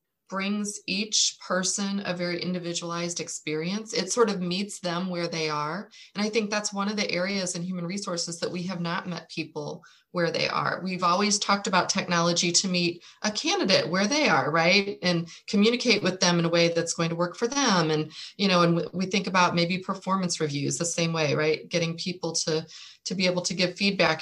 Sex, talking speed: female, 210 wpm